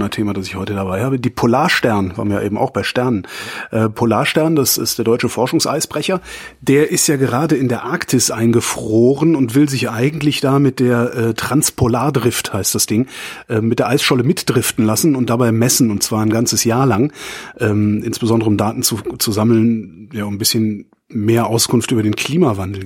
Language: German